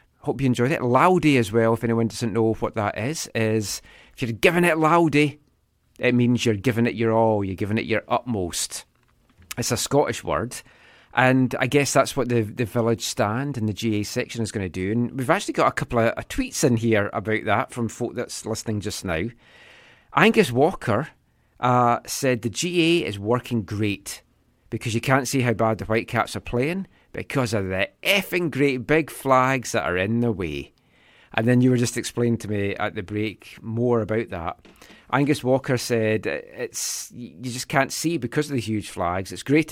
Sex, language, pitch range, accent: male, English, 110-135 Hz, British